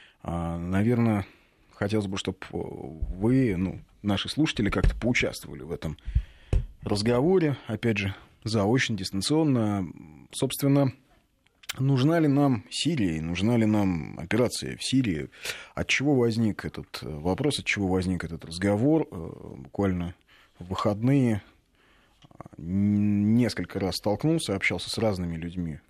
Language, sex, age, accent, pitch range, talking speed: Russian, male, 20-39, native, 90-120 Hz, 115 wpm